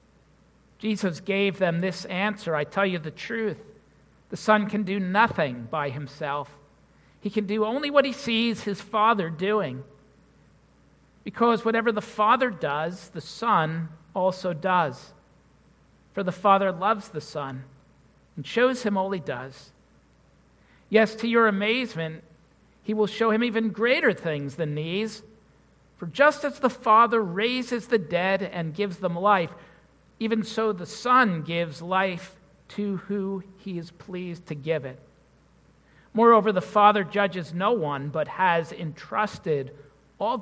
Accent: American